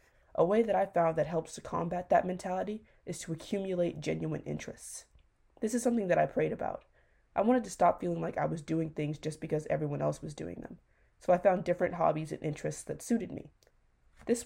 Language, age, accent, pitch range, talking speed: English, 20-39, American, 160-195 Hz, 210 wpm